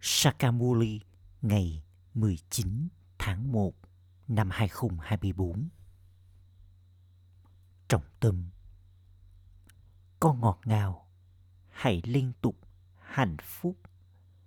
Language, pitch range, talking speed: Vietnamese, 90-115 Hz, 70 wpm